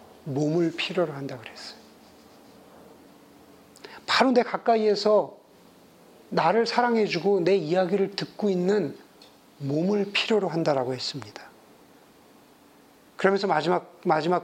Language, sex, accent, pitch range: Korean, male, native, 140-190 Hz